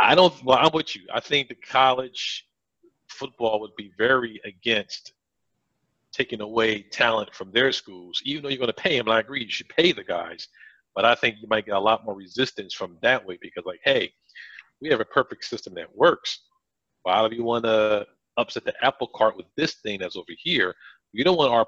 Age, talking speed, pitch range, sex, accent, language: 40-59, 215 wpm, 105-130 Hz, male, American, English